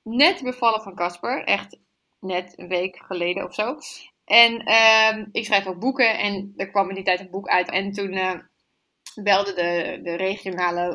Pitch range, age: 195-280 Hz, 20-39